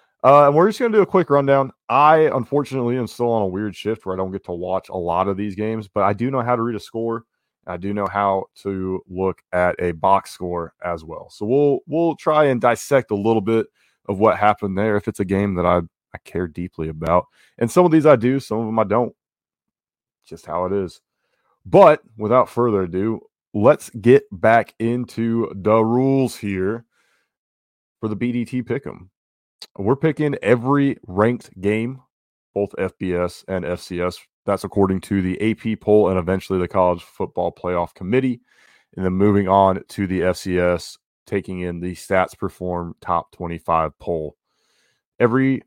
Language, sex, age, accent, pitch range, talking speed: English, male, 20-39, American, 90-120 Hz, 185 wpm